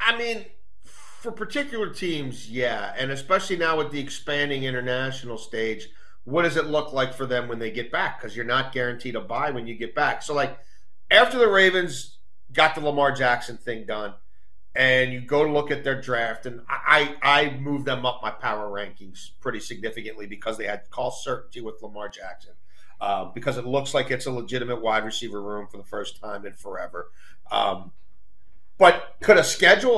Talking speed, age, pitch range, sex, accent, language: 190 wpm, 40-59, 120-165 Hz, male, American, English